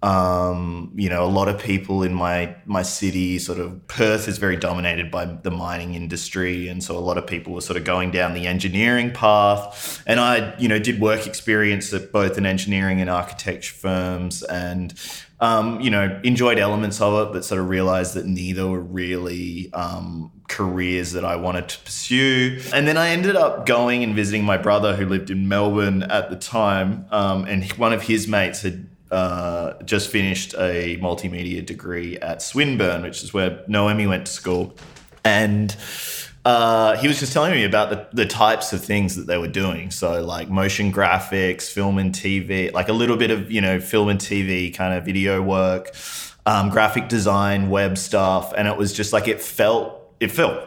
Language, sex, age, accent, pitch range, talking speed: English, male, 20-39, Australian, 90-105 Hz, 195 wpm